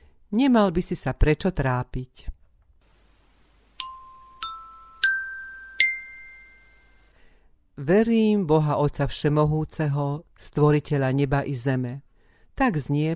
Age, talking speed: 50-69, 75 wpm